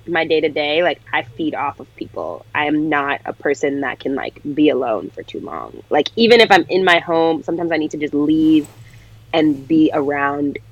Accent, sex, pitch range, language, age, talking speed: American, female, 115-170 Hz, English, 20-39, 205 wpm